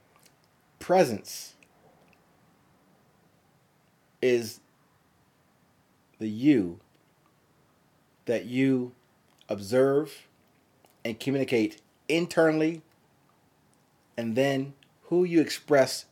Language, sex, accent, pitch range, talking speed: English, male, American, 115-145 Hz, 55 wpm